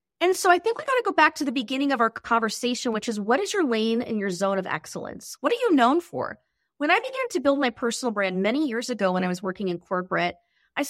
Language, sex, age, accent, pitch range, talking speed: English, female, 30-49, American, 210-290 Hz, 270 wpm